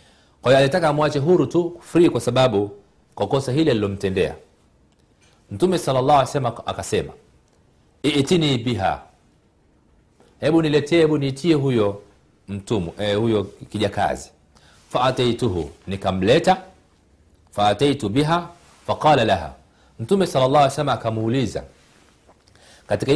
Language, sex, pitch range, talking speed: Swahili, male, 95-140 Hz, 105 wpm